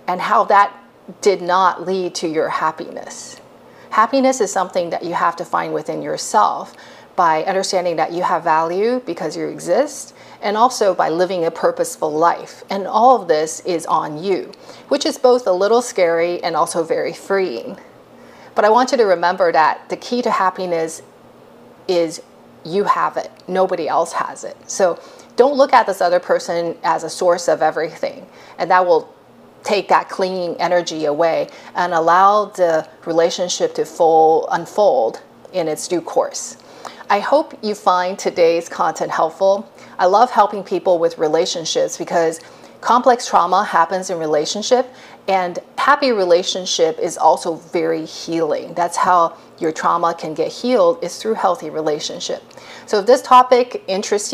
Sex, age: female, 40-59